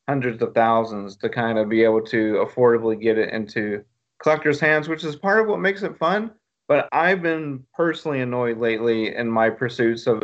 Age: 30-49